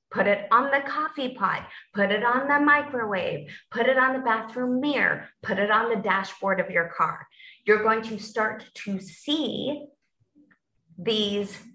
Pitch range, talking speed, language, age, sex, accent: 180-225 Hz, 165 wpm, English, 30-49, female, American